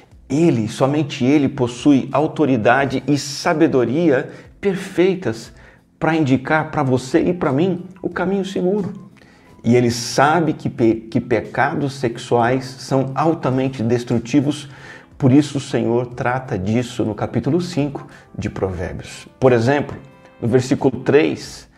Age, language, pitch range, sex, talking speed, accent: 50-69, Portuguese, 115-145 Hz, male, 120 wpm, Brazilian